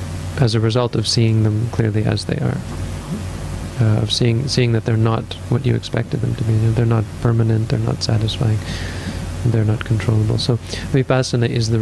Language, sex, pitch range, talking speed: English, male, 110-125 Hz, 195 wpm